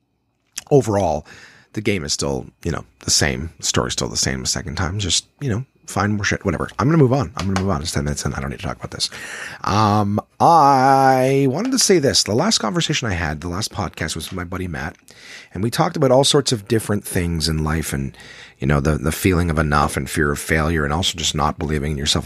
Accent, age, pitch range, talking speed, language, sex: American, 40-59, 80-120 Hz, 250 wpm, English, male